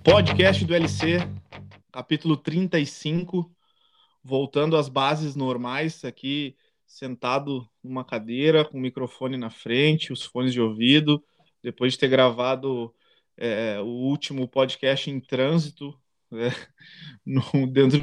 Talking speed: 110 wpm